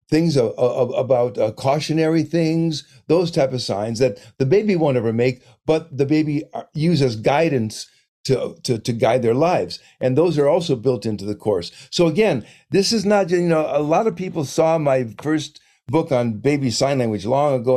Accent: American